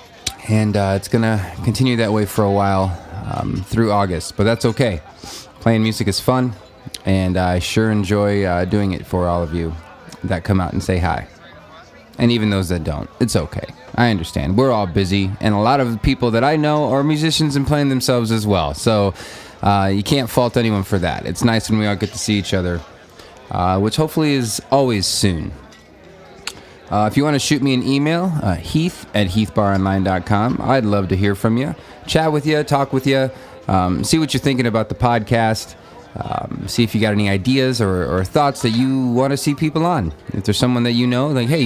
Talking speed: 215 wpm